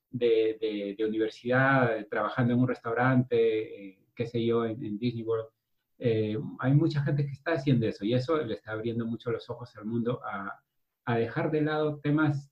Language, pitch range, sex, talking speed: English, 115-135 Hz, male, 190 wpm